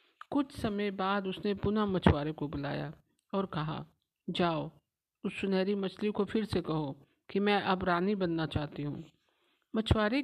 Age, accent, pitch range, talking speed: 50-69, native, 170-210 Hz, 150 wpm